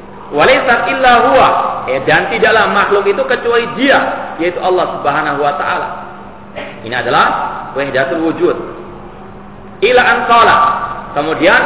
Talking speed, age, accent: 80 wpm, 40-59, native